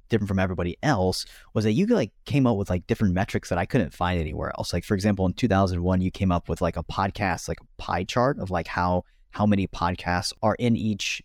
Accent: American